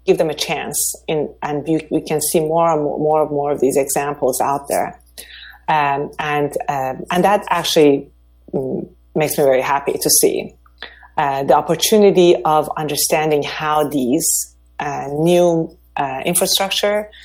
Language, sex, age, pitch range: English, female, 30-49, 140-165 Hz